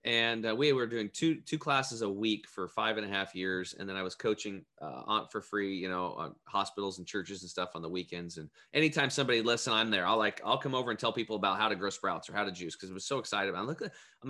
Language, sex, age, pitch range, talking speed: English, male, 30-49, 110-150 Hz, 275 wpm